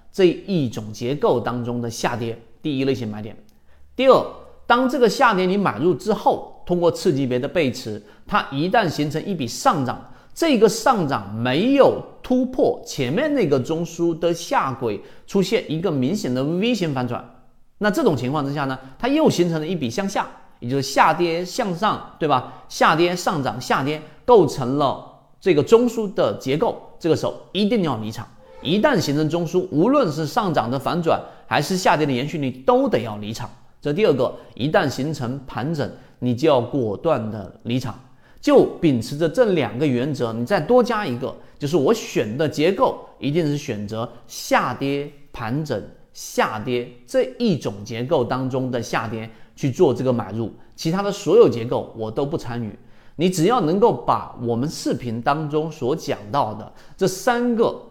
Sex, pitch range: male, 120-180 Hz